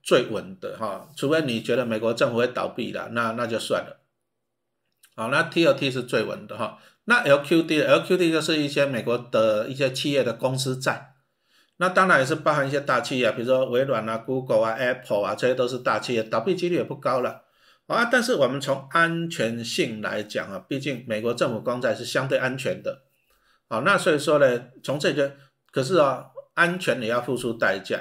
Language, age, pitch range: Chinese, 50-69, 125-165 Hz